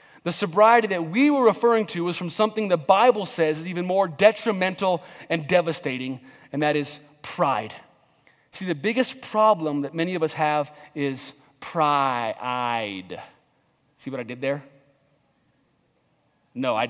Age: 30-49